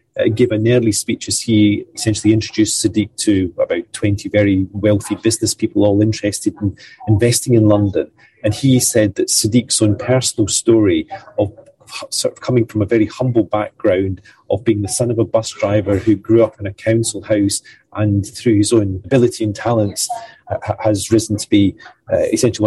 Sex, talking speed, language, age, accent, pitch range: male, 175 wpm, English, 30-49, British, 105-120 Hz